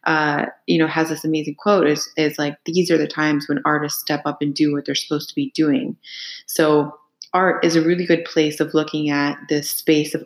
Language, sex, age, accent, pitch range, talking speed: English, female, 20-39, American, 150-180 Hz, 230 wpm